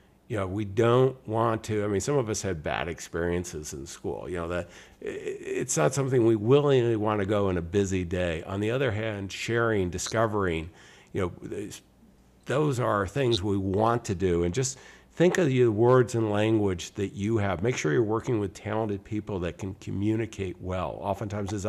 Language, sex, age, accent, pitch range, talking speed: English, male, 50-69, American, 95-115 Hz, 195 wpm